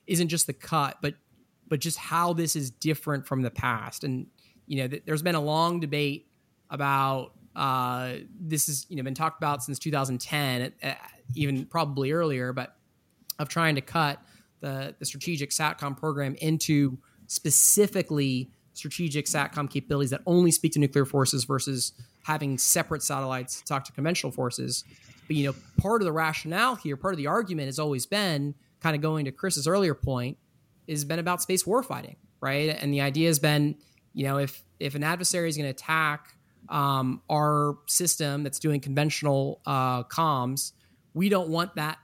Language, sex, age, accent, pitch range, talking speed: English, male, 20-39, American, 140-165 Hz, 175 wpm